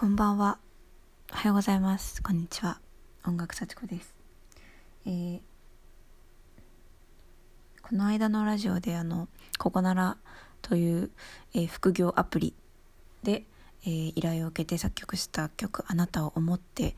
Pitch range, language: 165-200 Hz, Japanese